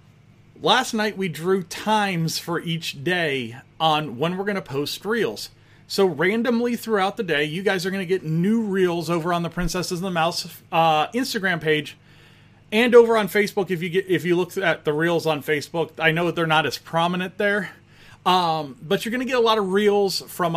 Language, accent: English, American